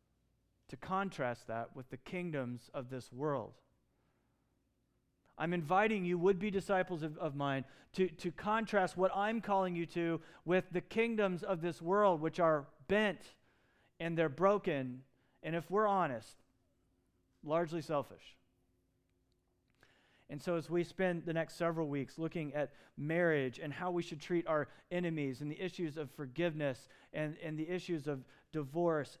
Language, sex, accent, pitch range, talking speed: English, male, American, 130-175 Hz, 150 wpm